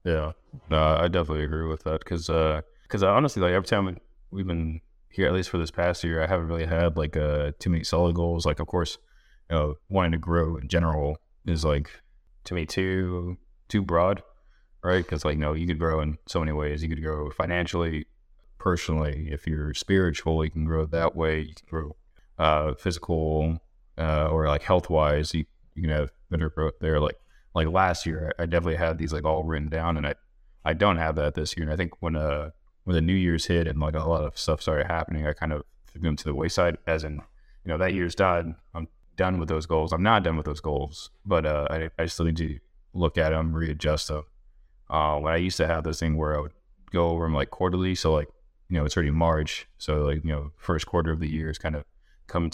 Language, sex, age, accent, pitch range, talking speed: English, male, 20-39, American, 75-85 Hz, 230 wpm